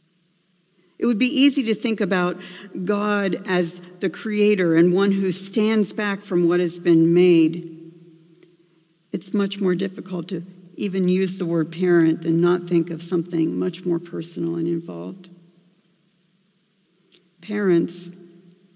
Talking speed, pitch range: 135 wpm, 170-185 Hz